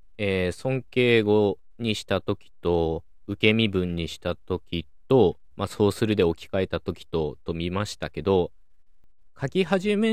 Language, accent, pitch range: Japanese, native, 85-130 Hz